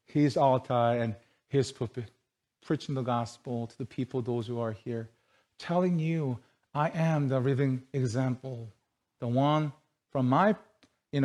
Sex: male